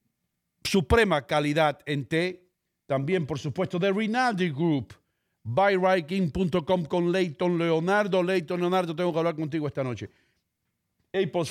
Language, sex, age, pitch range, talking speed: English, male, 50-69, 115-160 Hz, 120 wpm